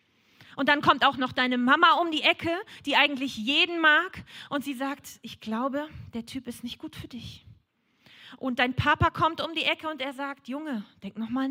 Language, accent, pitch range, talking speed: German, German, 200-260 Hz, 205 wpm